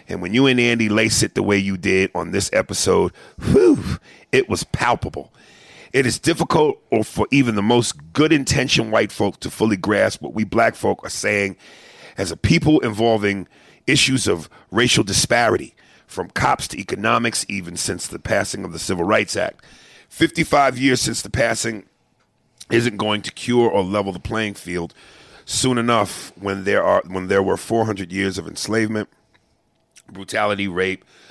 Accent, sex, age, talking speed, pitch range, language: American, male, 40-59, 165 wpm, 95-120 Hz, English